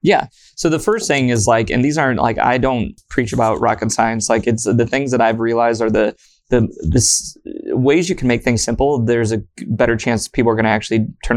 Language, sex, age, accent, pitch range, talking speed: English, male, 20-39, American, 115-125 Hz, 230 wpm